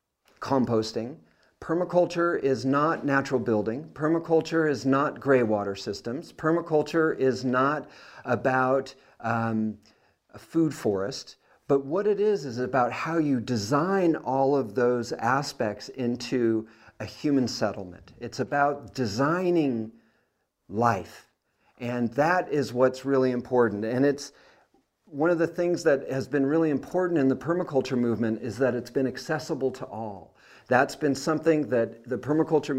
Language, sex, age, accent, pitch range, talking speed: English, male, 50-69, American, 120-150 Hz, 135 wpm